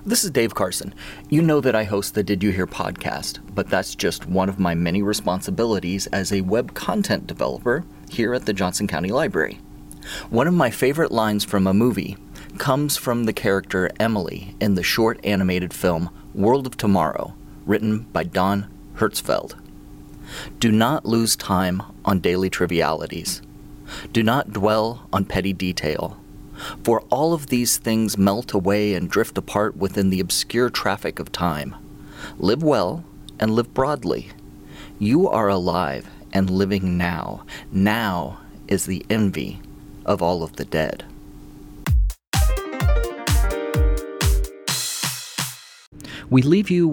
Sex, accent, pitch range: male, American, 90-110 Hz